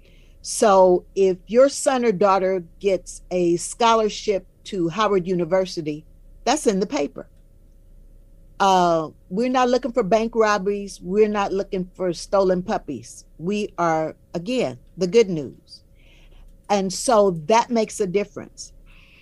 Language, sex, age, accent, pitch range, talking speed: English, female, 50-69, American, 170-225 Hz, 130 wpm